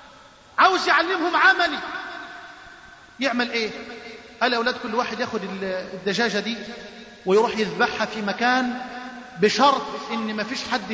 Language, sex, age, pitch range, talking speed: Arabic, male, 30-49, 220-295 Hz, 110 wpm